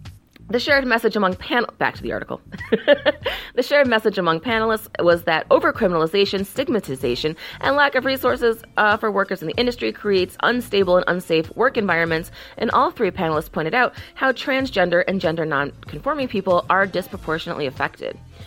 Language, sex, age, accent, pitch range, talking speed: English, female, 30-49, American, 165-245 Hz, 160 wpm